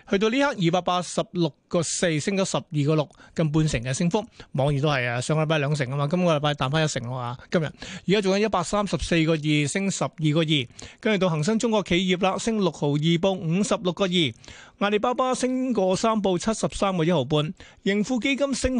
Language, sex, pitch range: Chinese, male, 155-200 Hz